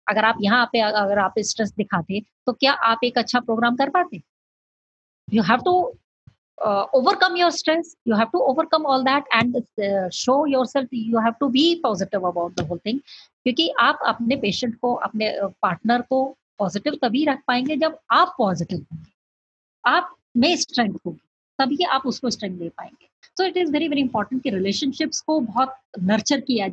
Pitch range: 210-300 Hz